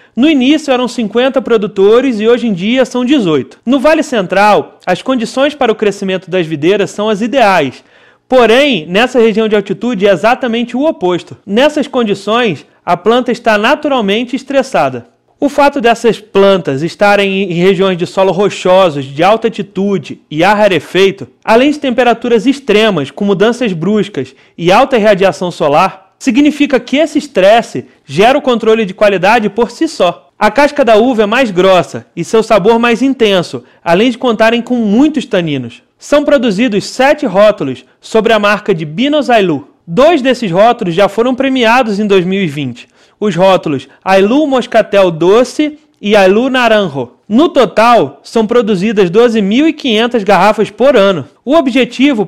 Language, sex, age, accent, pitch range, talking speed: Portuguese, male, 30-49, Brazilian, 190-250 Hz, 150 wpm